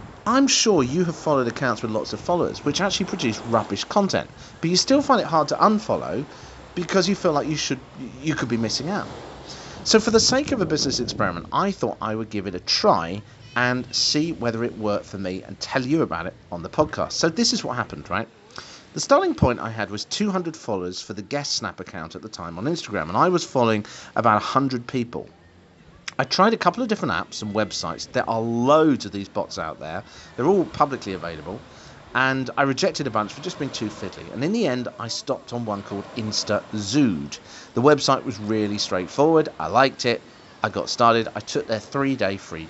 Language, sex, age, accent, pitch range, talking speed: English, male, 40-59, British, 105-160 Hz, 215 wpm